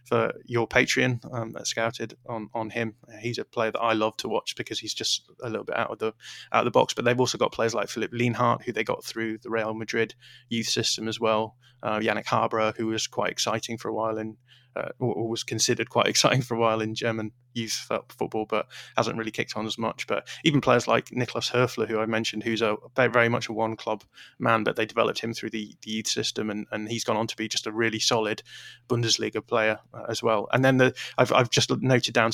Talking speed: 240 wpm